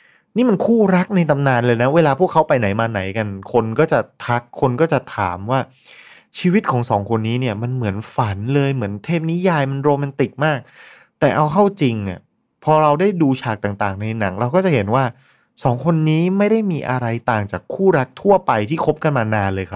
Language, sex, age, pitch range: Thai, male, 20-39, 110-150 Hz